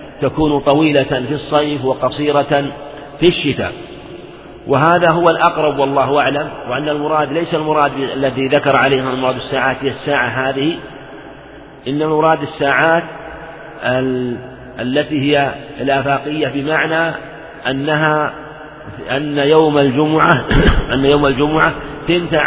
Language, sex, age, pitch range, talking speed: Arabic, male, 50-69, 135-150 Hz, 100 wpm